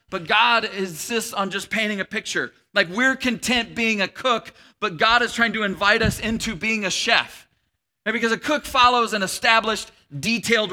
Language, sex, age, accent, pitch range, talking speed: English, male, 40-59, American, 175-225 Hz, 180 wpm